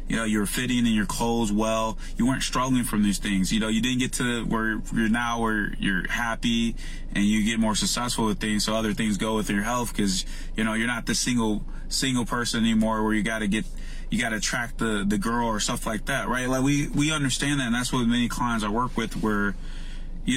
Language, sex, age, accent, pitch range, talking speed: English, male, 20-39, American, 110-145 Hz, 240 wpm